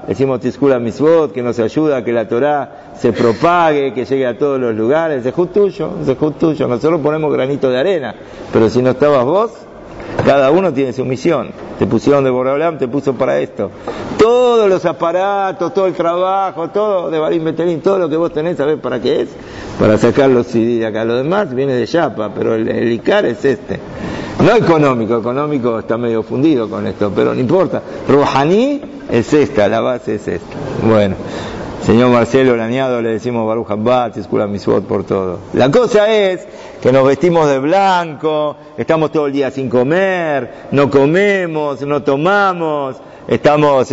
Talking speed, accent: 175 wpm, Argentinian